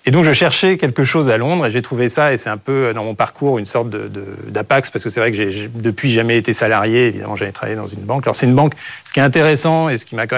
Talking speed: 310 wpm